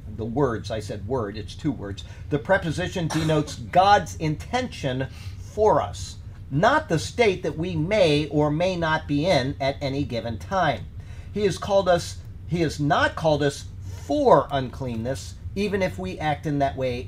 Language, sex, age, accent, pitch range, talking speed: English, male, 50-69, American, 100-155 Hz, 170 wpm